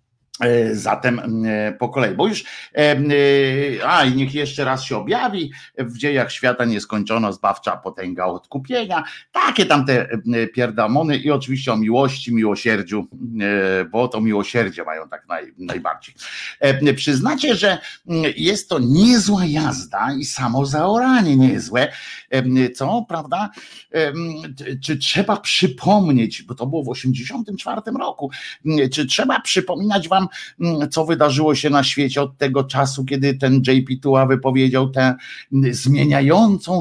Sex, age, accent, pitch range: male, 50-69, native, 125-165 Hz